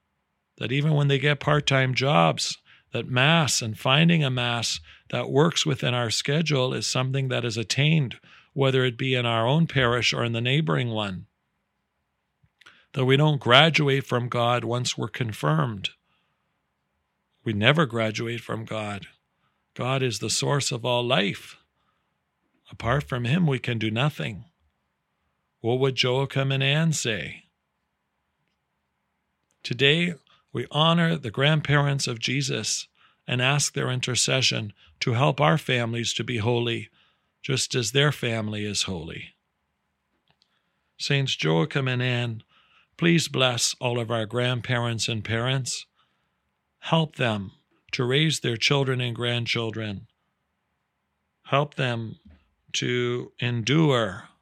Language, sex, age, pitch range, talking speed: English, male, 40-59, 115-140 Hz, 130 wpm